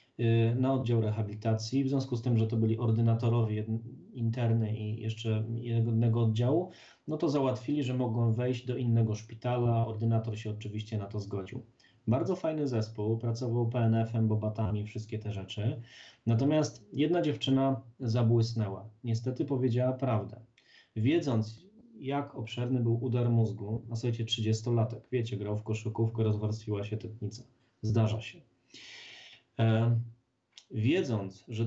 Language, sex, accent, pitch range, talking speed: Polish, male, native, 110-130 Hz, 130 wpm